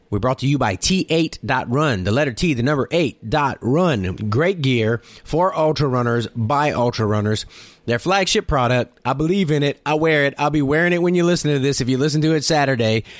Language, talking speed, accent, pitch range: English, 215 wpm, American, 115-155 Hz